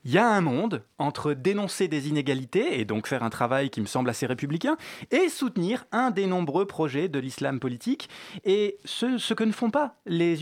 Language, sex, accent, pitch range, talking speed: French, male, French, 140-215 Hz, 205 wpm